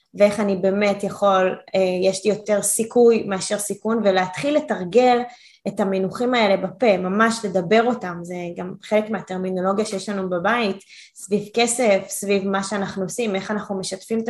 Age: 20-39